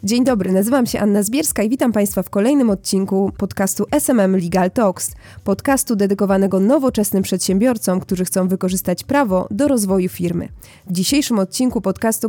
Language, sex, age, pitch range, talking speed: Polish, female, 20-39, 190-230 Hz, 150 wpm